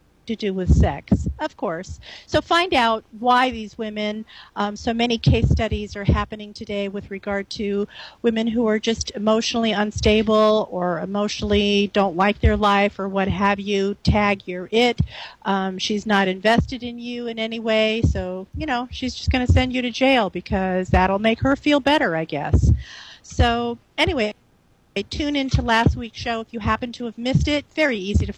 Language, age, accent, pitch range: English, 40-59, American, 200-235 Hz